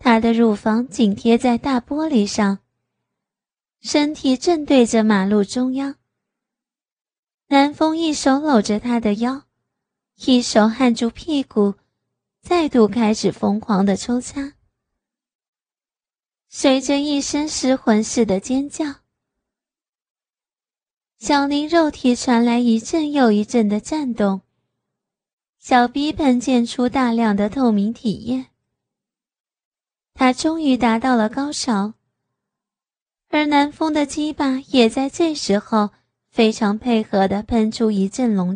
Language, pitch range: Chinese, 220-280 Hz